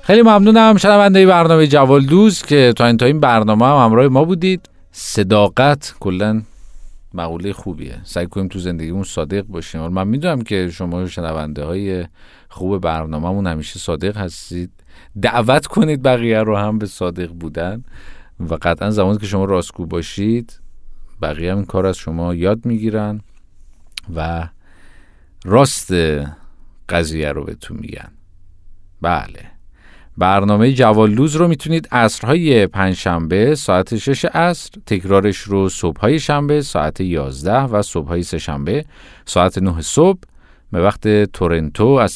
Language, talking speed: Persian, 135 wpm